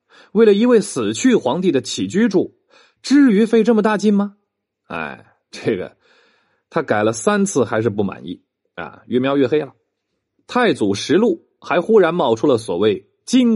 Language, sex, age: Chinese, male, 30-49